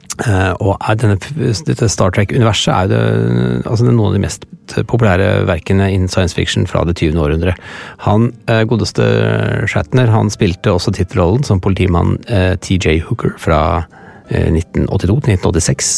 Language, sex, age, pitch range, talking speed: English, male, 30-49, 95-115 Hz, 130 wpm